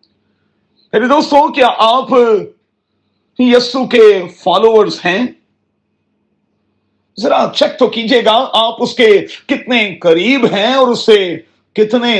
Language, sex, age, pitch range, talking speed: Urdu, male, 40-59, 200-250 Hz, 110 wpm